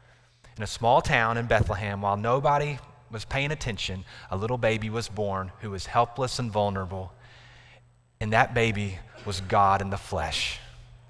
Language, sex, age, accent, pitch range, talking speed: English, male, 30-49, American, 120-160 Hz, 155 wpm